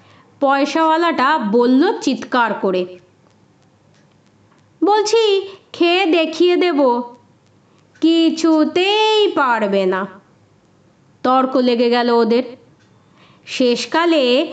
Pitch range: 245-350 Hz